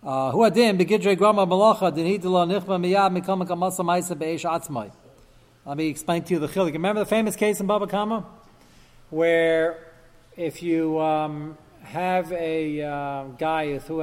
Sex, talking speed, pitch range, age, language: male, 105 wpm, 135-190 Hz, 40-59, English